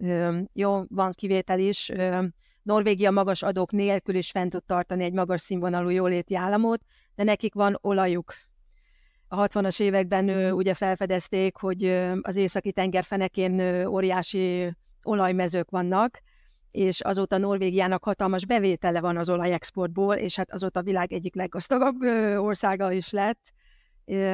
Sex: female